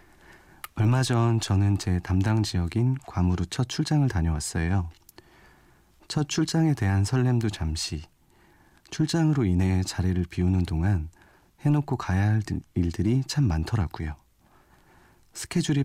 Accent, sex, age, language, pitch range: native, male, 40-59, Korean, 85-125 Hz